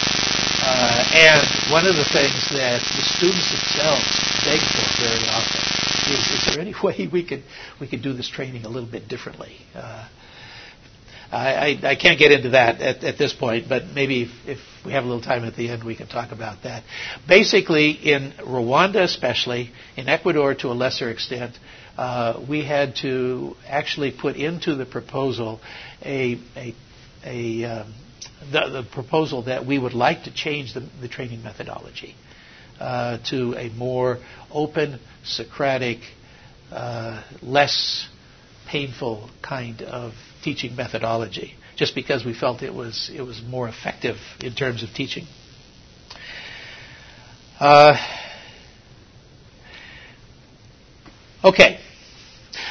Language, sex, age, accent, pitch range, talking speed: English, male, 60-79, American, 120-145 Hz, 140 wpm